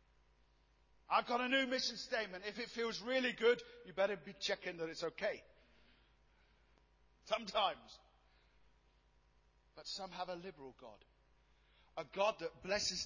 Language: English